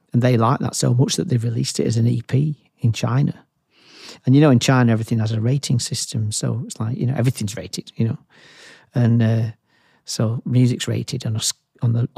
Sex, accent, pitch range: male, British, 115-130 Hz